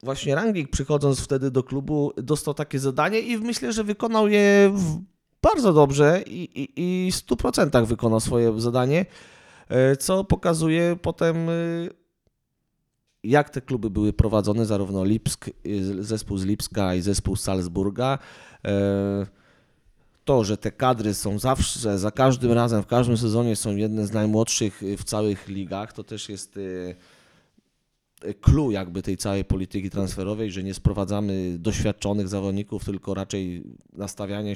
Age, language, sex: 30-49, Polish, male